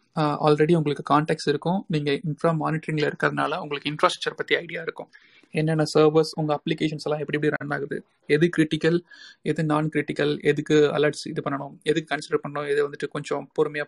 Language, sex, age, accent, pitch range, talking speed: Tamil, male, 30-49, native, 150-170 Hz, 165 wpm